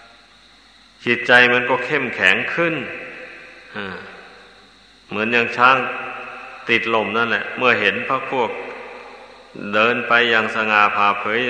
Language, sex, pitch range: Thai, male, 115-120 Hz